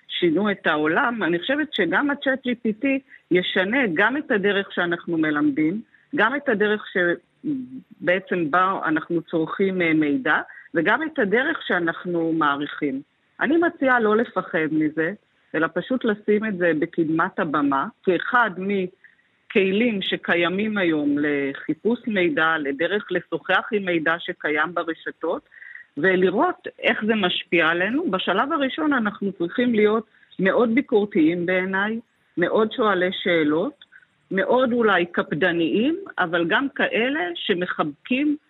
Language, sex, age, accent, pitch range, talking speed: Hebrew, female, 40-59, native, 170-245 Hz, 115 wpm